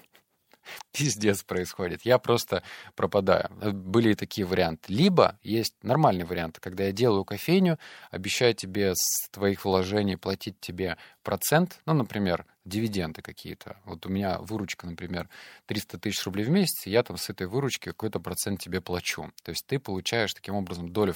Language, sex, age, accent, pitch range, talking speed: Russian, male, 20-39, native, 95-125 Hz, 160 wpm